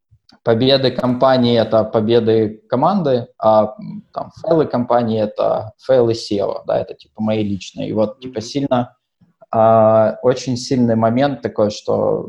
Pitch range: 105-125 Hz